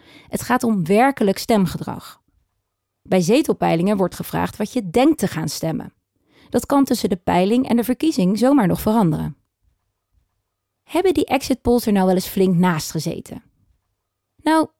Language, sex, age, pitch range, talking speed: Dutch, female, 20-39, 180-255 Hz, 150 wpm